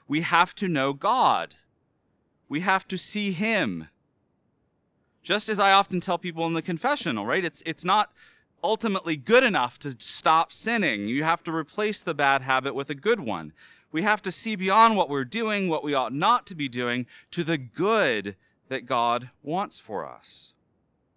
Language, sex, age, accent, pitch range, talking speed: English, male, 30-49, American, 125-195 Hz, 180 wpm